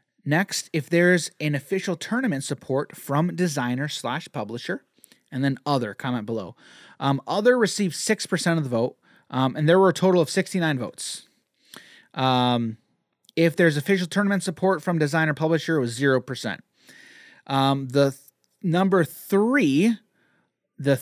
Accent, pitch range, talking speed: American, 140-200 Hz, 140 wpm